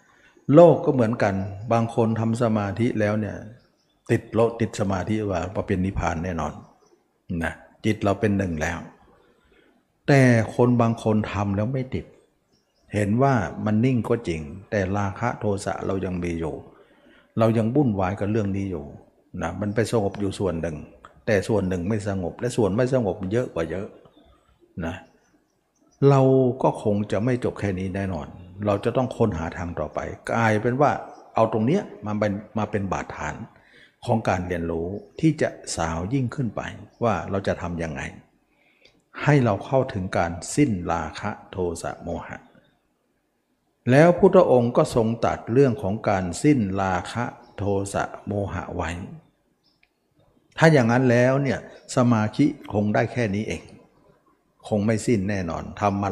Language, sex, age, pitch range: Thai, male, 60-79, 95-120 Hz